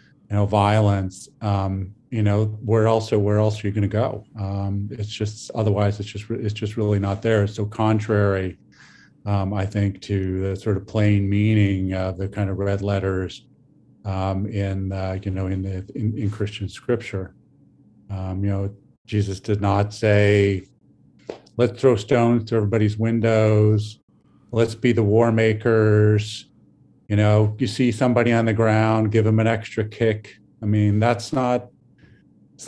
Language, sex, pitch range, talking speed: English, male, 100-115 Hz, 165 wpm